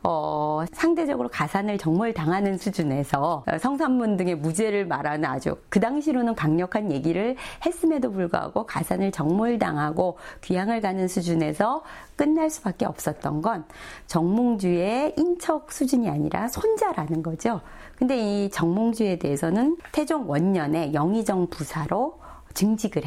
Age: 40-59